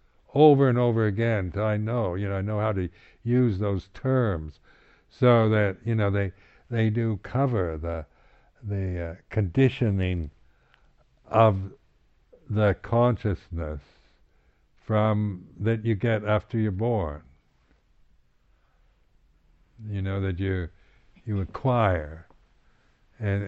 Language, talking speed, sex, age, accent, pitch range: English, 115 wpm, male, 60-79, American, 90-115 Hz